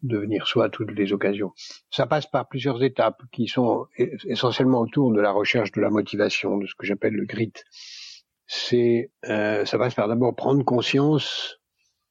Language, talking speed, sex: French, 175 wpm, male